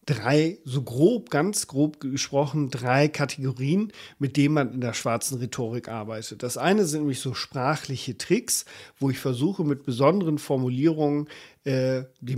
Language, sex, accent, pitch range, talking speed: German, male, German, 130-155 Hz, 145 wpm